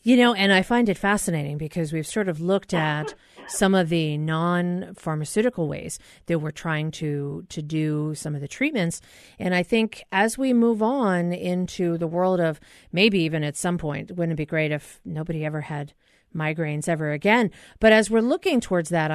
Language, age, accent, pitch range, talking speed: English, 40-59, American, 160-205 Hz, 190 wpm